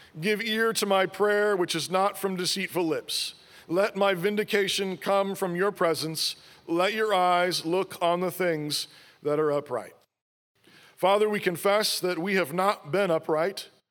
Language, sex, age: English, male, 40-59